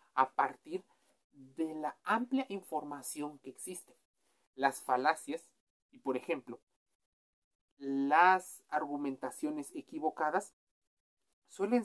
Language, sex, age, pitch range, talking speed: Spanish, male, 40-59, 150-225 Hz, 85 wpm